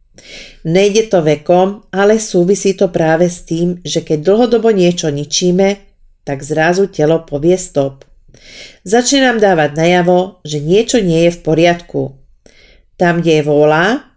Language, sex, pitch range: Slovak, female, 160-205 Hz